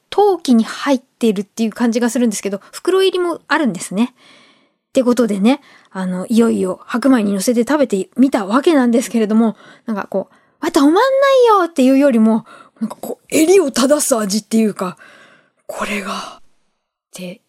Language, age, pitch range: Japanese, 20-39, 215-285 Hz